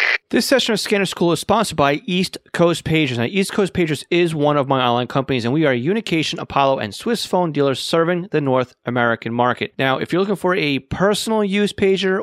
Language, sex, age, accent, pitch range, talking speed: English, male, 30-49, American, 130-175 Hz, 215 wpm